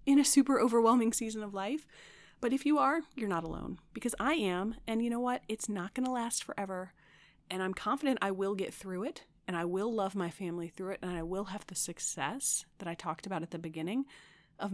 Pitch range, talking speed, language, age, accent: 170-225 Hz, 230 wpm, English, 30-49, American